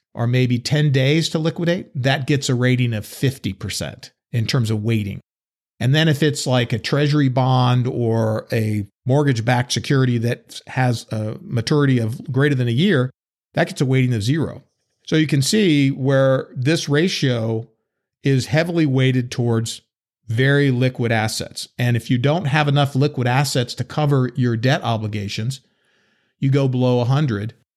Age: 50-69